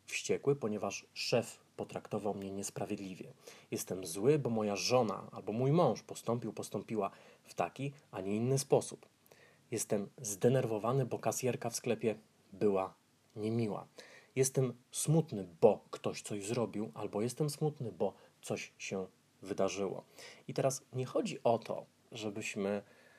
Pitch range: 105-135 Hz